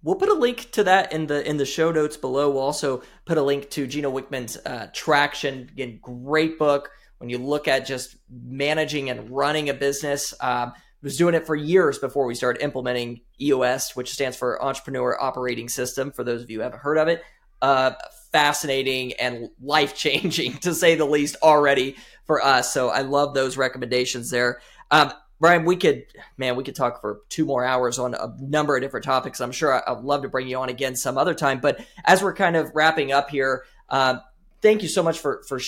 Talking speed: 210 wpm